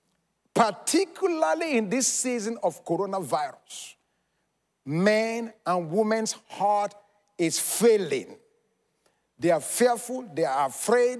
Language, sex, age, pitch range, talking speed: English, male, 50-69, 180-265 Hz, 95 wpm